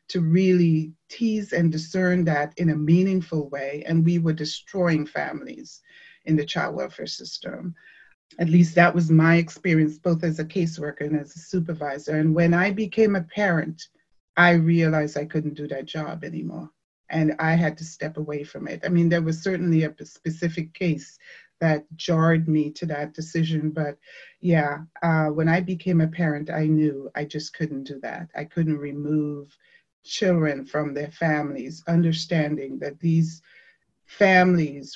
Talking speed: 165 wpm